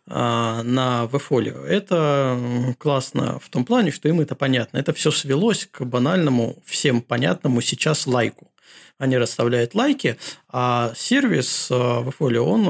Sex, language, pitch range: male, Russian, 125-160 Hz